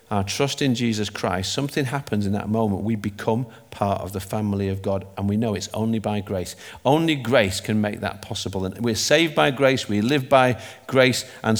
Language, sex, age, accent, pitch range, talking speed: English, male, 50-69, British, 105-135 Hz, 210 wpm